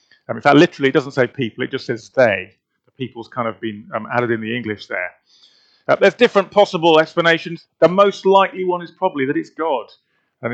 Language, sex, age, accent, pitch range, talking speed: English, male, 30-49, British, 125-165 Hz, 210 wpm